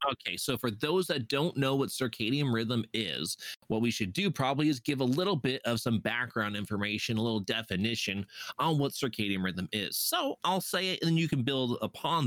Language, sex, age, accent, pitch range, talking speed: English, male, 30-49, American, 115-160 Hz, 210 wpm